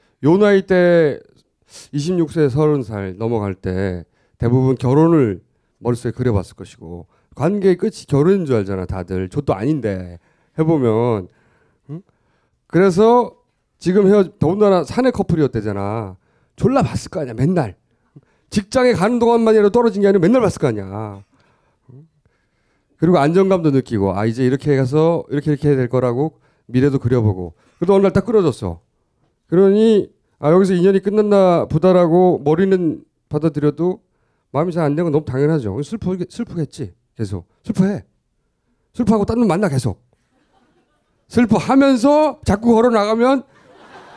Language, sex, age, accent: Korean, male, 30-49, native